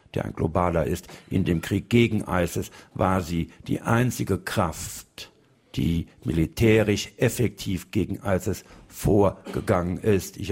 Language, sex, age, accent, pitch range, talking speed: German, male, 60-79, German, 90-110 Hz, 125 wpm